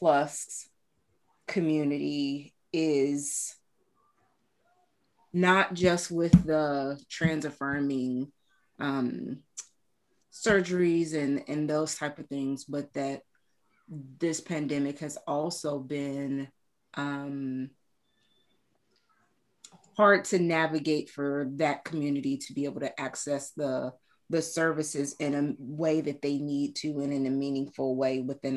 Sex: female